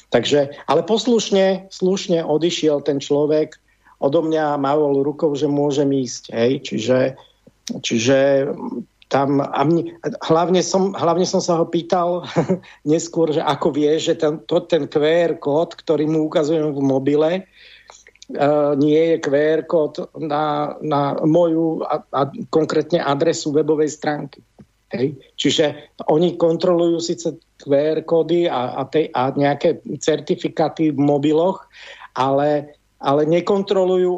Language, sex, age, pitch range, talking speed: English, male, 50-69, 145-170 Hz, 125 wpm